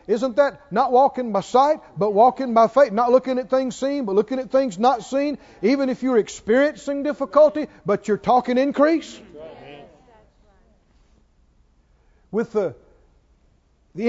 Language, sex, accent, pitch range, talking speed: English, male, American, 195-275 Hz, 140 wpm